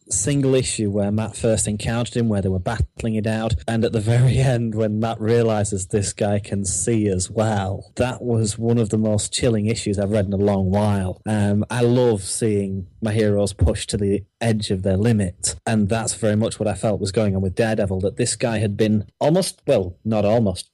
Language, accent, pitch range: English, British, 100-115 Hz